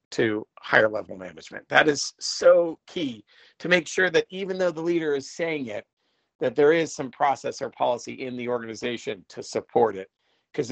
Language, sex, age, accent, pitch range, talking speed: English, male, 40-59, American, 115-175 Hz, 185 wpm